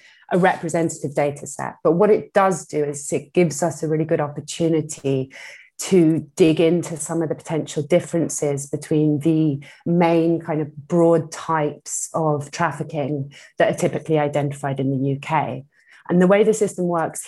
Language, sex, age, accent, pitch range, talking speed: English, female, 30-49, British, 150-170 Hz, 165 wpm